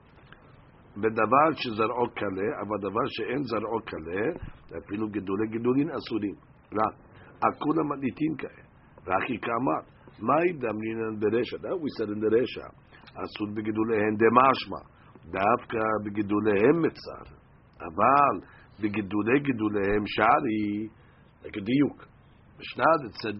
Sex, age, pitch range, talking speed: male, 50-69, 105-135 Hz, 95 wpm